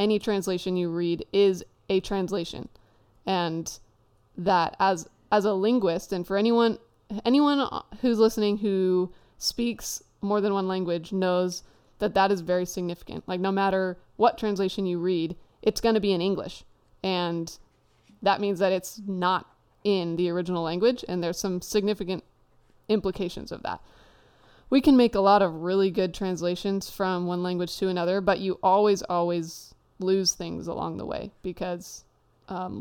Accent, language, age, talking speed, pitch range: American, English, 20-39, 155 wpm, 180-205 Hz